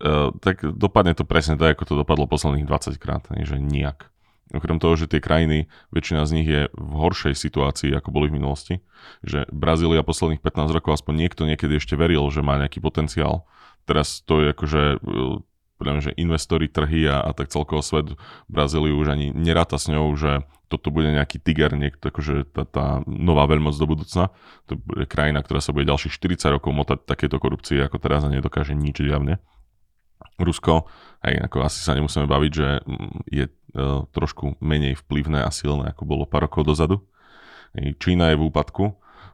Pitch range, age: 70-80 Hz, 20-39